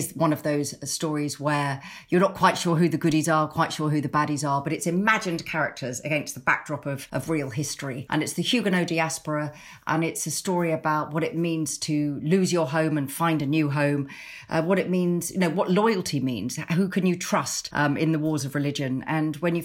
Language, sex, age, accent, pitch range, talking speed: English, female, 40-59, British, 145-175 Hz, 225 wpm